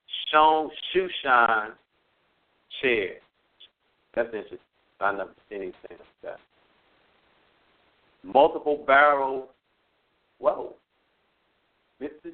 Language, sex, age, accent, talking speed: English, male, 50-69, American, 80 wpm